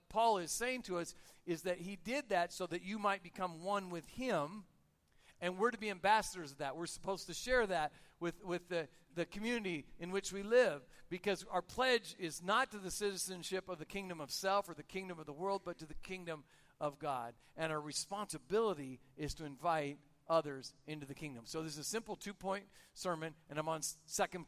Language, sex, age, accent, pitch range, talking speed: English, male, 50-69, American, 135-185 Hz, 210 wpm